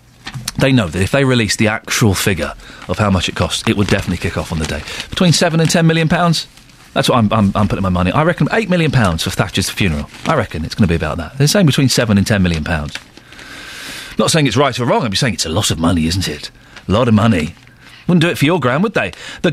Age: 40-59